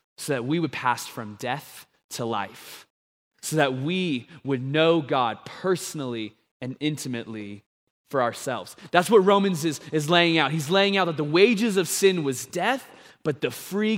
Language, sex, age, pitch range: English, male, 20-39, 130-185 Hz